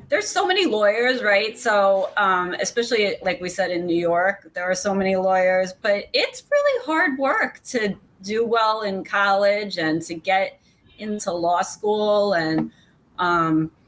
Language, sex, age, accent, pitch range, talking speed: English, female, 30-49, American, 170-210 Hz, 160 wpm